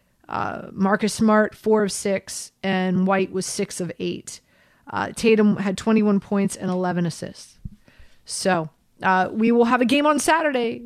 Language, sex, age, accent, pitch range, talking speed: English, female, 30-49, American, 195-240 Hz, 160 wpm